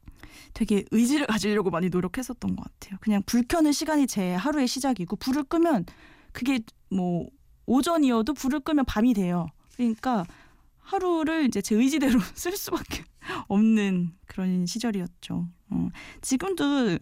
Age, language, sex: 20-39, Korean, female